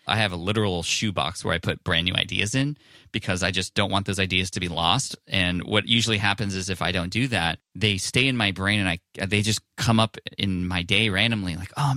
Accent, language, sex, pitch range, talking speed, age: American, English, male, 85-110 Hz, 245 wpm, 20-39